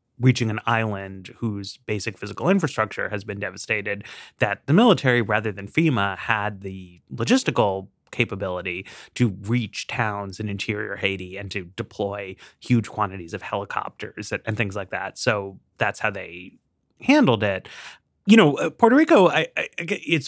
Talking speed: 140 wpm